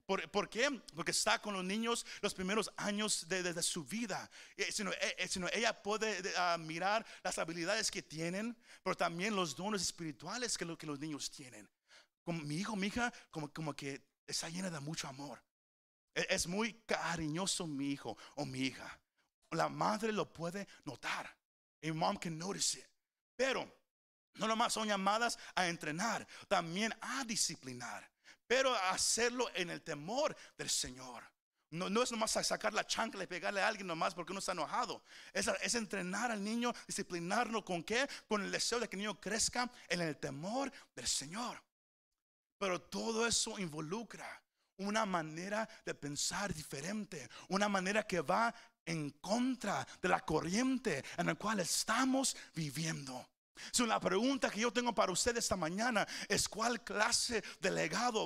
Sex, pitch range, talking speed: male, 170-230 Hz, 170 wpm